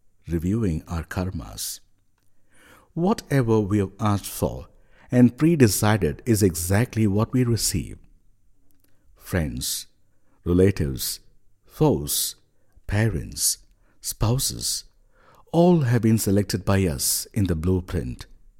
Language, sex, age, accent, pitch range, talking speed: English, male, 60-79, Indian, 90-115 Hz, 95 wpm